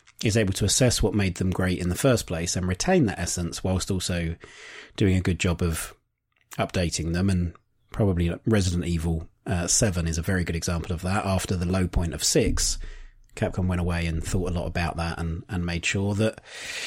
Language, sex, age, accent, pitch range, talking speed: English, male, 30-49, British, 90-110 Hz, 205 wpm